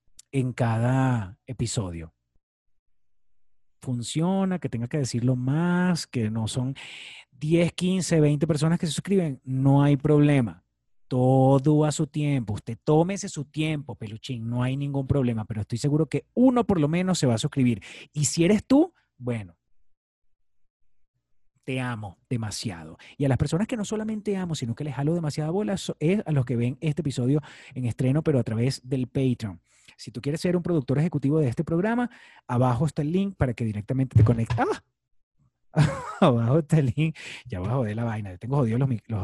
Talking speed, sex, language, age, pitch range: 175 wpm, male, Spanish, 30-49, 115-150 Hz